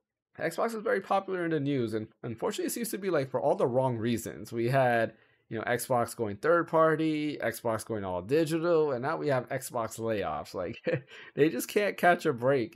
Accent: American